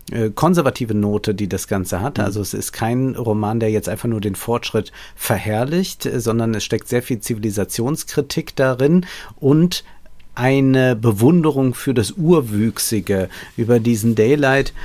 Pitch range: 105-125 Hz